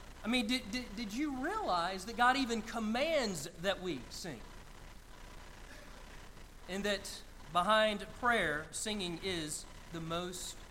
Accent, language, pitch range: American, English, 180-240 Hz